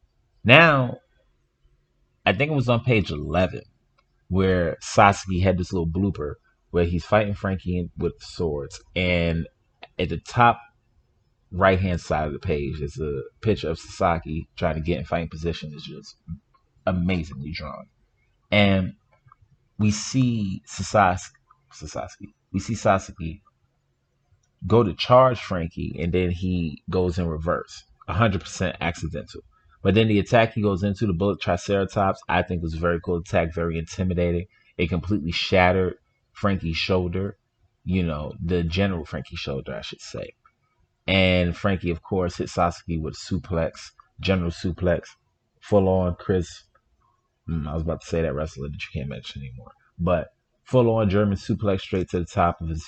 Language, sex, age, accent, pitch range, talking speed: English, male, 30-49, American, 85-100 Hz, 150 wpm